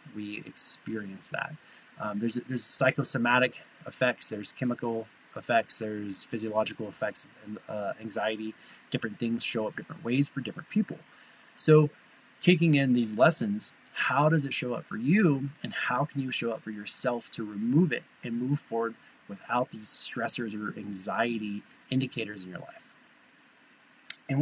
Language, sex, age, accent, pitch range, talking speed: English, male, 20-39, American, 115-155 Hz, 155 wpm